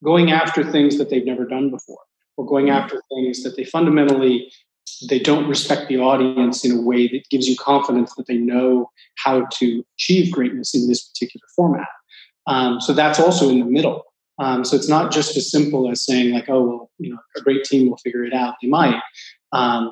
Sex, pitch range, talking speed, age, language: male, 125-145 Hz, 210 wpm, 30-49, English